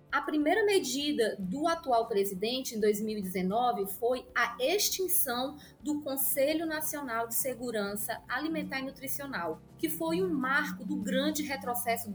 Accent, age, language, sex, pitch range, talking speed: Brazilian, 20-39, Portuguese, female, 230-300 Hz, 130 wpm